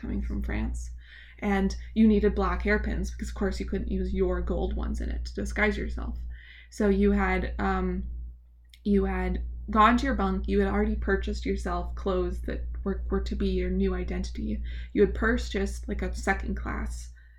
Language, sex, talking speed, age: English, female, 180 wpm, 20-39